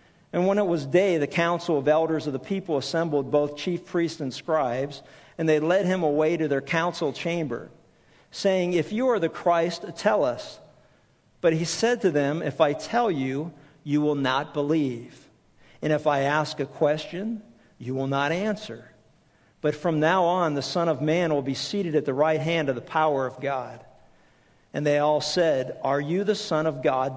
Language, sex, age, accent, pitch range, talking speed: English, male, 50-69, American, 140-175 Hz, 195 wpm